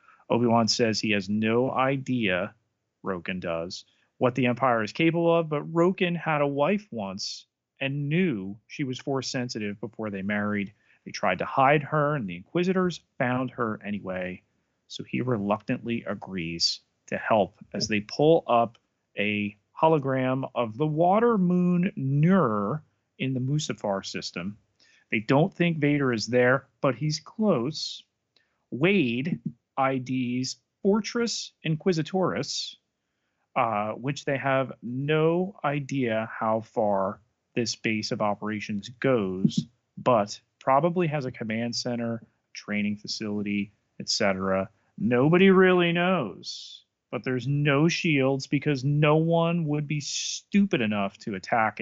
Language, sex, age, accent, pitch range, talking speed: English, male, 40-59, American, 110-160 Hz, 130 wpm